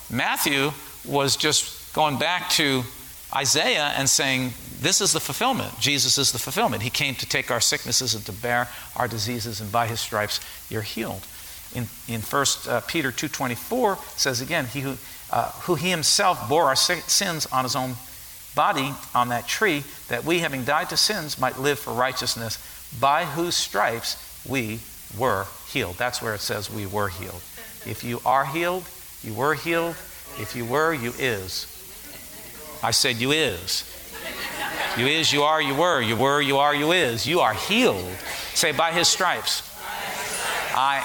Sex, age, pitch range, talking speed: male, 50-69, 115-150 Hz, 170 wpm